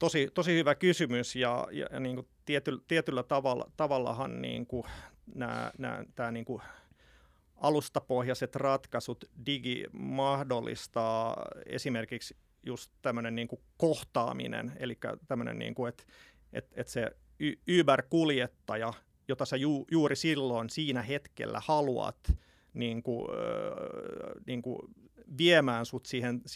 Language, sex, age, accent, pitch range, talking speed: Finnish, male, 30-49, native, 120-145 Hz, 120 wpm